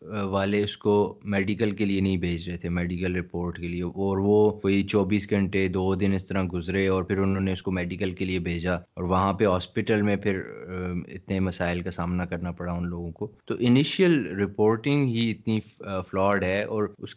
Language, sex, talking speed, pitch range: Urdu, male, 205 wpm, 90-105 Hz